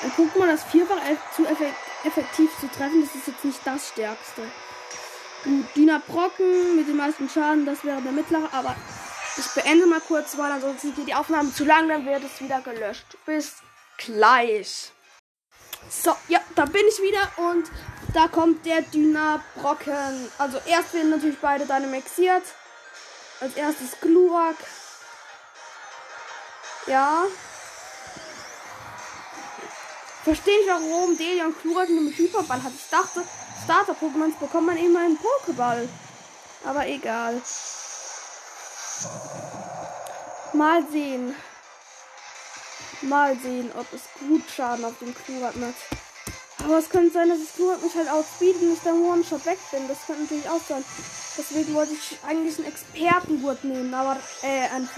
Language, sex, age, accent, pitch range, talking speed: German, female, 20-39, German, 275-335 Hz, 140 wpm